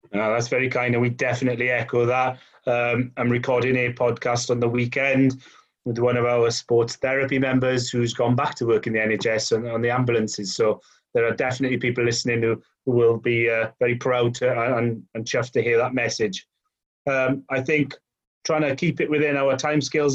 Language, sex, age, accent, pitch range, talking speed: English, male, 30-49, British, 120-140 Hz, 210 wpm